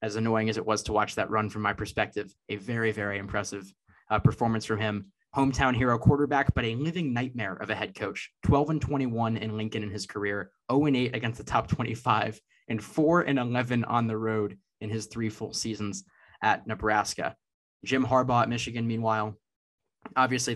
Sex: male